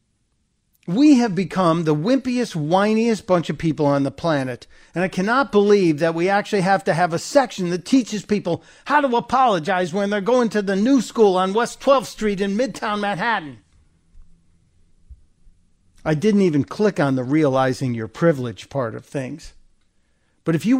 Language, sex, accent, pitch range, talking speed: English, male, American, 120-185 Hz, 170 wpm